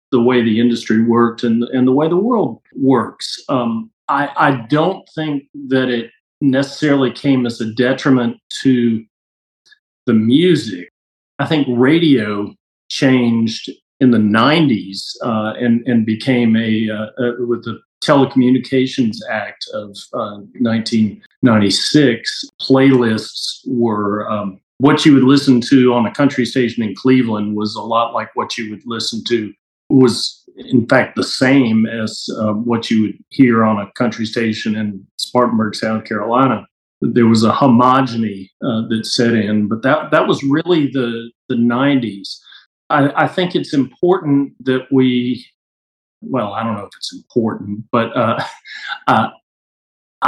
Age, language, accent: 40-59, English, American